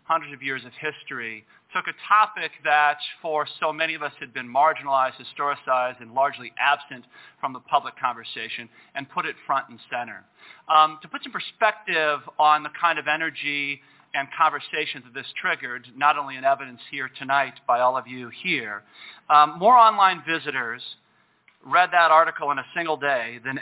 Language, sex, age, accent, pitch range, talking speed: English, male, 40-59, American, 130-160 Hz, 175 wpm